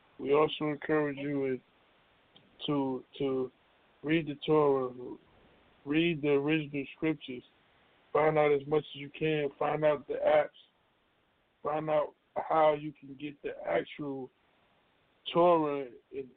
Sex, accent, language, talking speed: male, American, English, 125 wpm